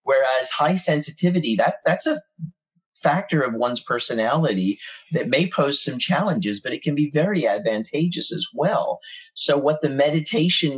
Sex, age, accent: male, 40-59, American